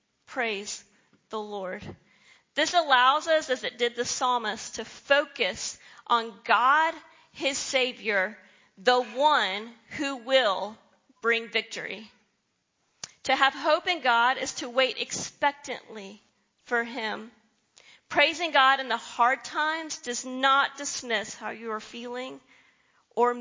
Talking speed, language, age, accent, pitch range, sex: 125 wpm, English, 40-59, American, 220-280 Hz, female